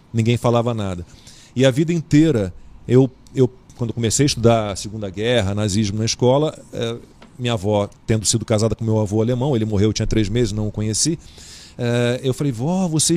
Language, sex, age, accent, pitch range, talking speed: Portuguese, male, 40-59, Brazilian, 110-140 Hz, 185 wpm